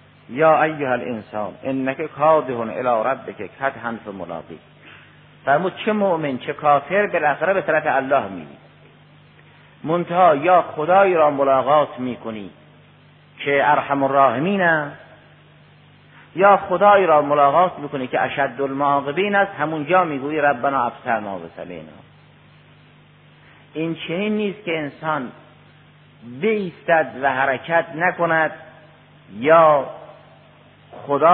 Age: 50-69